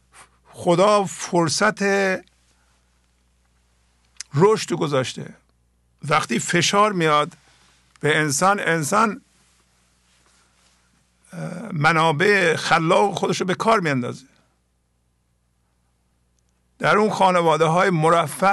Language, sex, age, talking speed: English, male, 50-69, 70 wpm